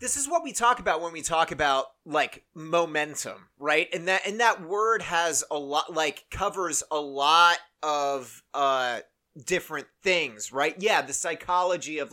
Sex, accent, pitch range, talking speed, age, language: male, American, 140-175 Hz, 170 wpm, 30-49, English